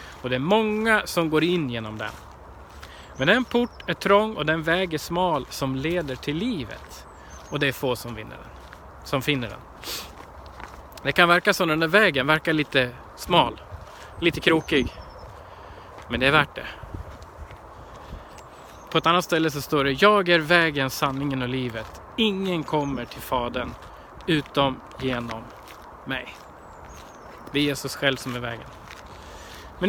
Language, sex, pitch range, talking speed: Swedish, male, 135-190 Hz, 155 wpm